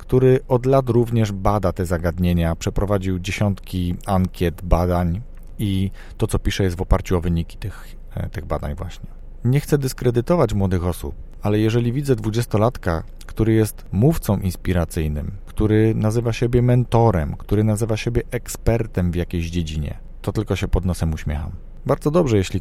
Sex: male